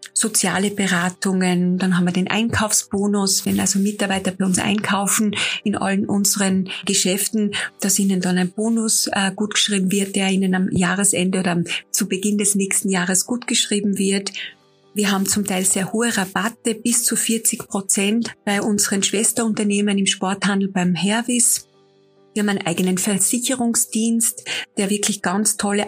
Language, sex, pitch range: German, female, 190-215 Hz